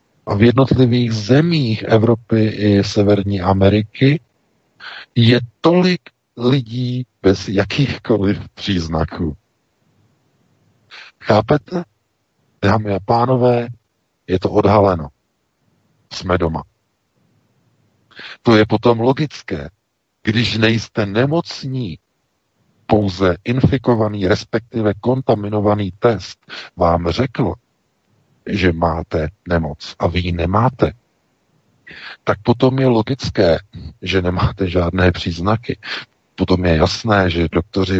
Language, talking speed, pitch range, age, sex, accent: Czech, 90 wpm, 90-120 Hz, 50-69, male, native